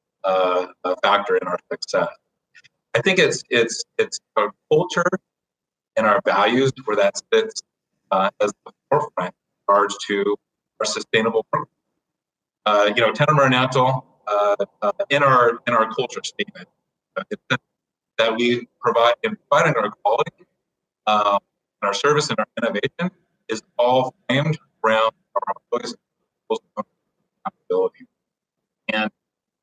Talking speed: 130 wpm